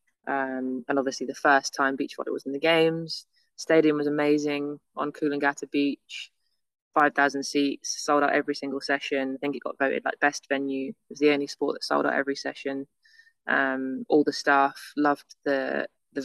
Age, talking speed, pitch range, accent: 20-39, 185 wpm, 140-155 Hz, British